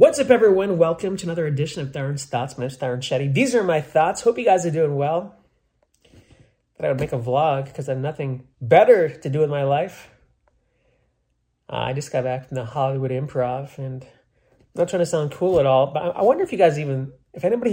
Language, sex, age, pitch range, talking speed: English, male, 30-49, 130-165 Hz, 225 wpm